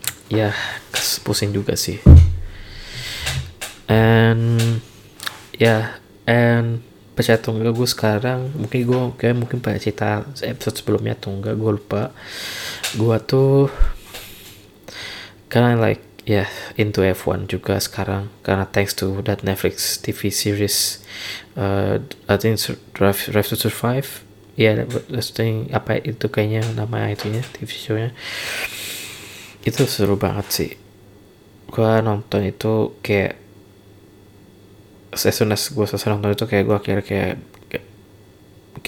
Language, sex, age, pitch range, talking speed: Indonesian, male, 20-39, 100-110 Hz, 115 wpm